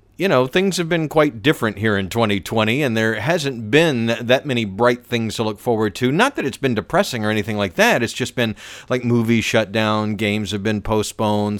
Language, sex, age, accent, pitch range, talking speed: English, male, 40-59, American, 105-135 Hz, 215 wpm